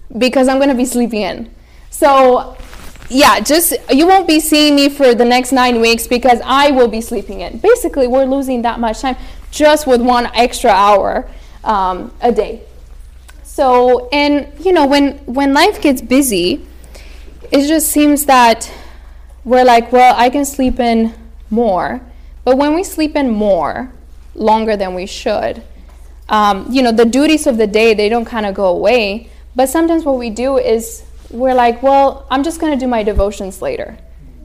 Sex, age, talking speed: female, 10-29, 180 wpm